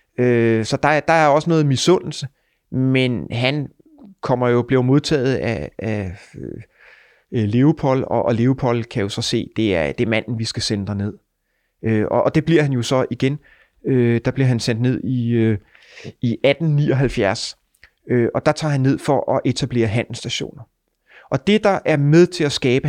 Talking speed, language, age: 190 wpm, Danish, 30-49